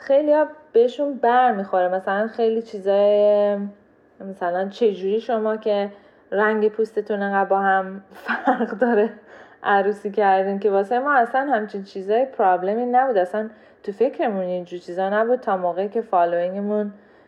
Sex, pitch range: female, 190-250 Hz